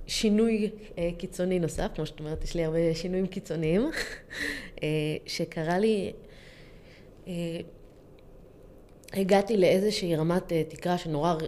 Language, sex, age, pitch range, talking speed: Hebrew, female, 20-39, 155-190 Hz, 95 wpm